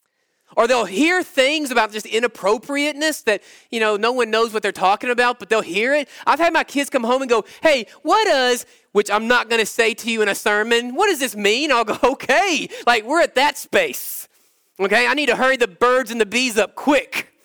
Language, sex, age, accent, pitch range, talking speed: English, male, 20-39, American, 205-295 Hz, 230 wpm